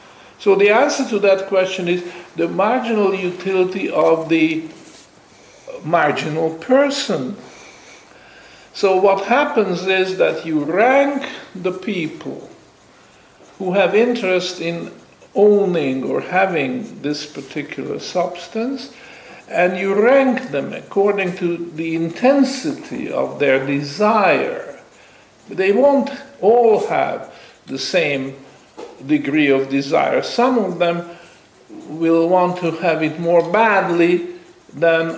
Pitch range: 165-220 Hz